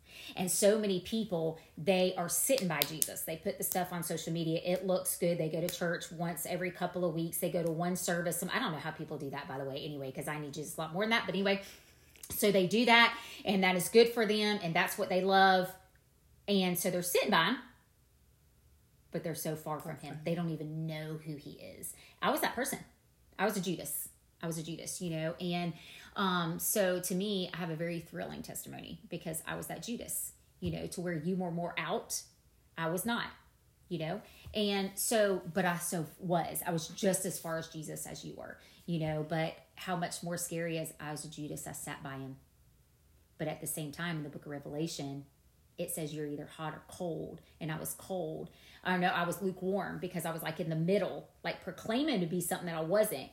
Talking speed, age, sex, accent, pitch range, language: 230 wpm, 30-49, female, American, 160-185 Hz, English